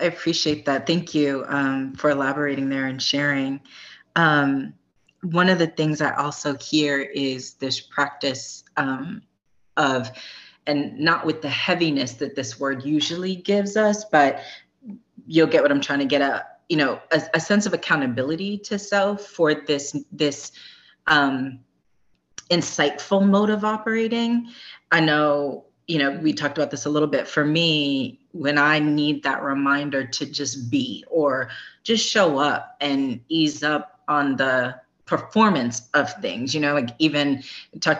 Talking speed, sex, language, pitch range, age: 155 wpm, female, English, 135-165 Hz, 30-49